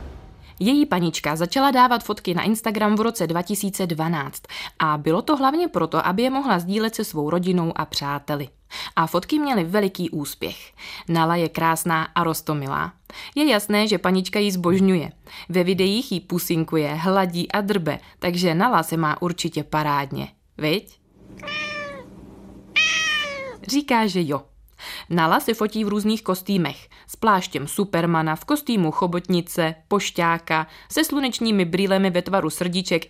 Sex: female